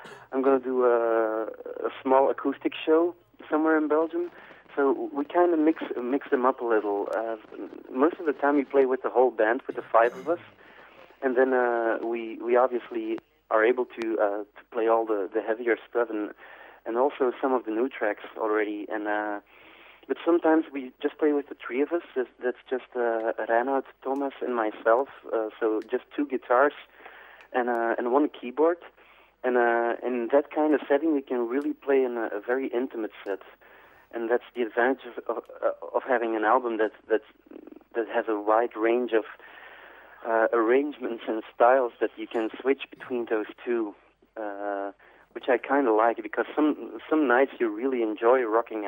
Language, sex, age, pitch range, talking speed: Spanish, male, 30-49, 115-145 Hz, 190 wpm